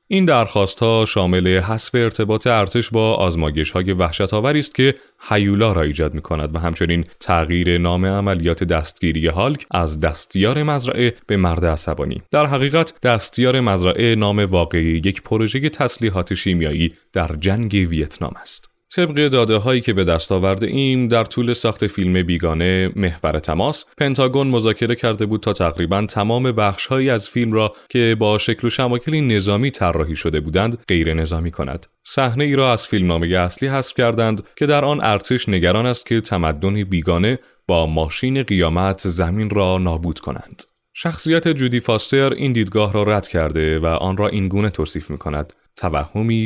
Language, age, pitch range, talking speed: Persian, 30-49, 85-120 Hz, 155 wpm